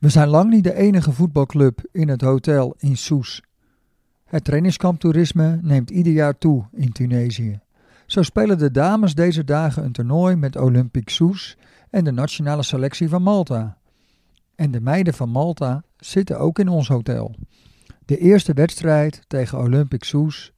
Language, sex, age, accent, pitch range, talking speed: Dutch, male, 50-69, Dutch, 130-170 Hz, 155 wpm